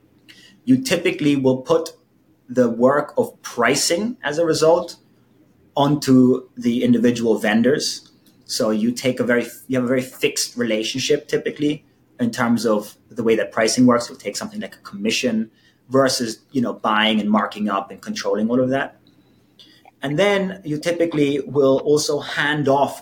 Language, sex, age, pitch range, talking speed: English, male, 30-49, 120-160 Hz, 160 wpm